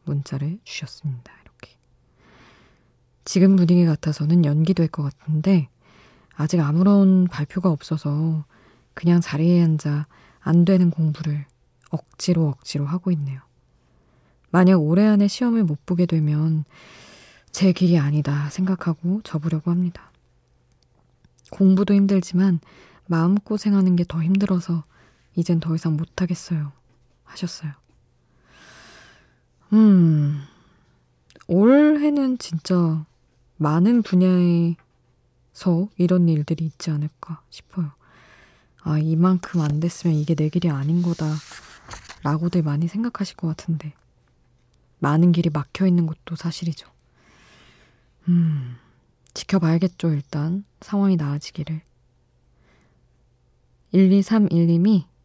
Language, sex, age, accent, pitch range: Korean, female, 20-39, native, 145-180 Hz